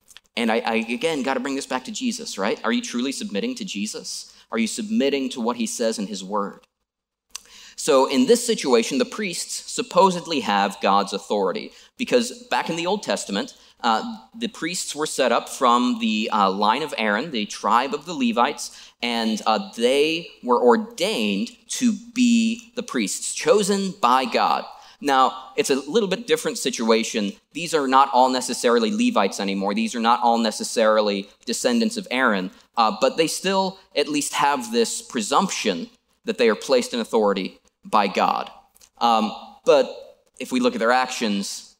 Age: 30-49